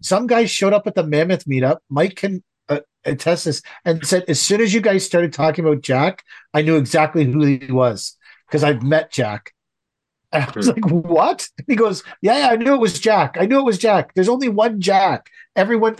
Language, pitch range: English, 140-185 Hz